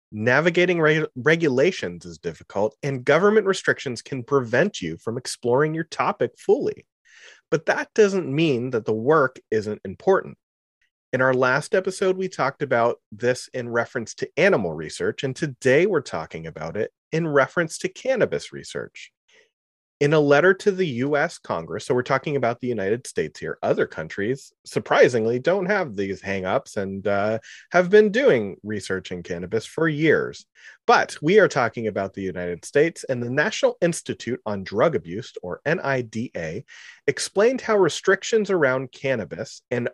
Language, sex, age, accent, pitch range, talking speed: English, male, 30-49, American, 115-185 Hz, 155 wpm